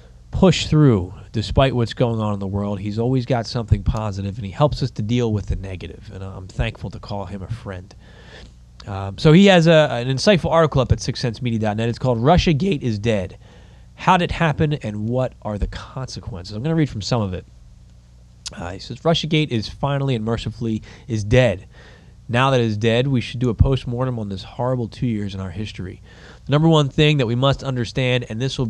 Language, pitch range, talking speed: English, 105-130 Hz, 215 wpm